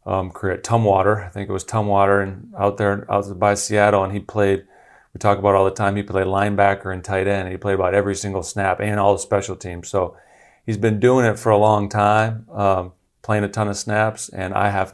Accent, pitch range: American, 90-105 Hz